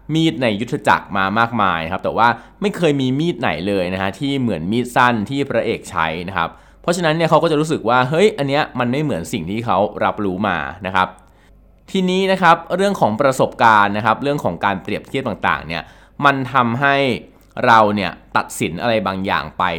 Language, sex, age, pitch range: Thai, male, 20-39, 95-140 Hz